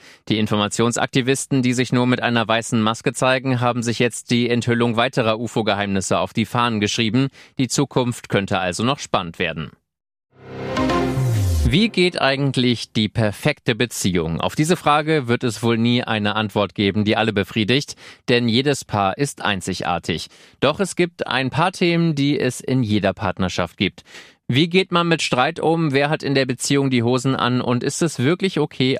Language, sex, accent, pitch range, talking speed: German, male, German, 110-140 Hz, 170 wpm